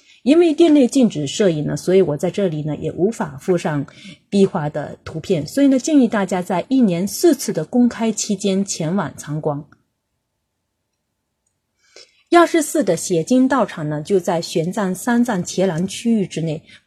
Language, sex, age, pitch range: Chinese, female, 30-49, 160-230 Hz